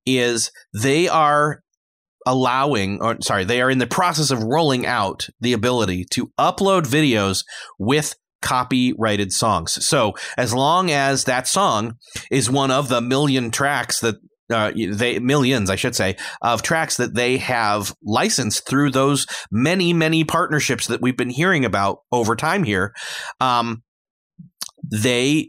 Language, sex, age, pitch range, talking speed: English, male, 30-49, 115-145 Hz, 145 wpm